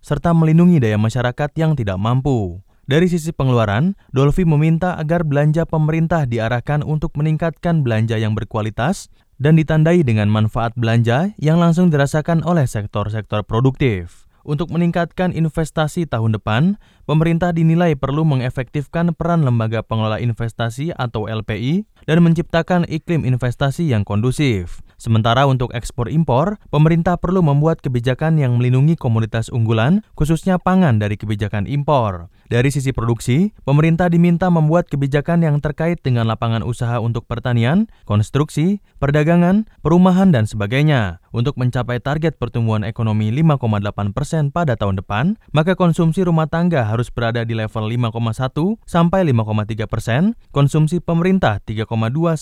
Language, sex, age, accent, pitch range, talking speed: Indonesian, male, 20-39, native, 115-170 Hz, 130 wpm